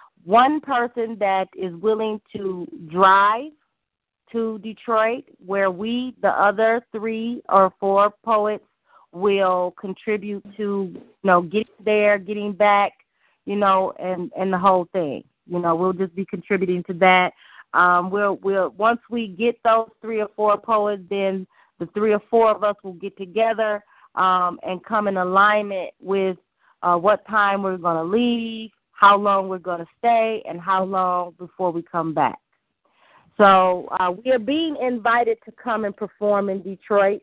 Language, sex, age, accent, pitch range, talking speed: English, female, 30-49, American, 185-220 Hz, 160 wpm